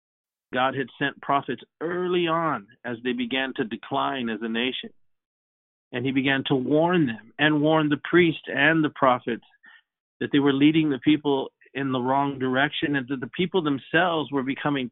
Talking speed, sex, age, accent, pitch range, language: 175 wpm, male, 50-69, American, 130-155 Hz, English